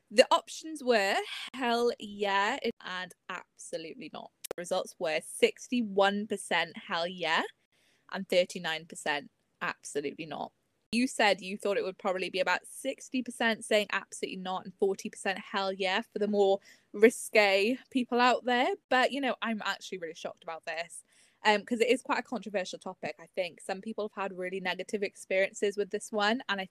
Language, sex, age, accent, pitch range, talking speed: English, female, 10-29, British, 190-235 Hz, 160 wpm